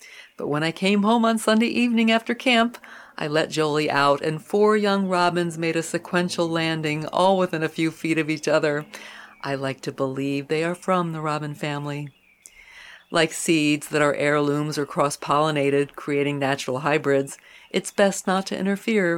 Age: 50-69